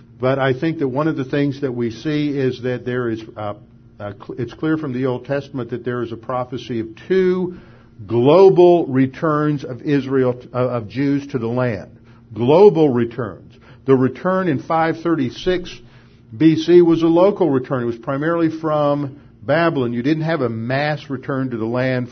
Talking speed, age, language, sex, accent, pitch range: 190 wpm, 50-69, English, male, American, 115-145 Hz